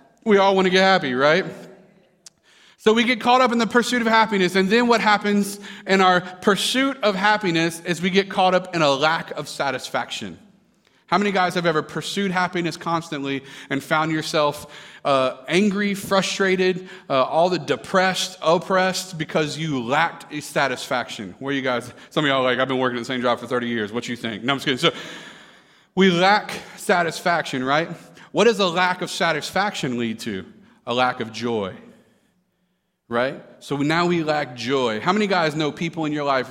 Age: 30-49